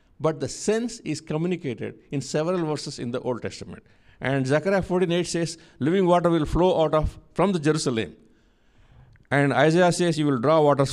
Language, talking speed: English, 175 wpm